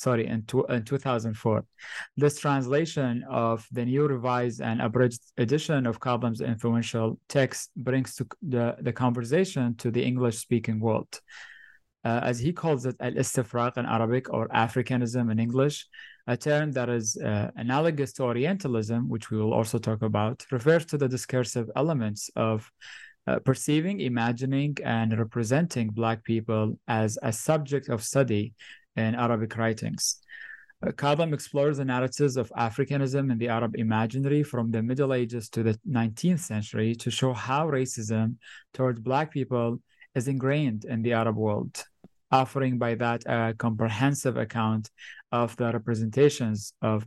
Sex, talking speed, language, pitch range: male, 145 wpm, English, 115-135 Hz